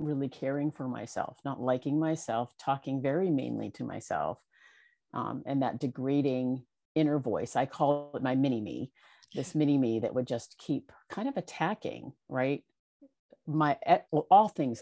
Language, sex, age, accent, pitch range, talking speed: English, female, 50-69, American, 125-155 Hz, 155 wpm